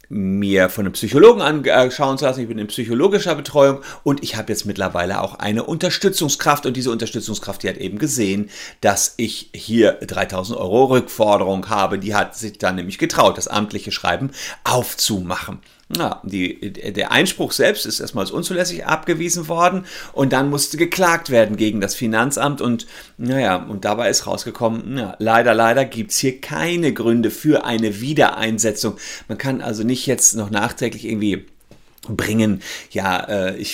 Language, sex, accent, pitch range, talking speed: German, male, German, 105-145 Hz, 160 wpm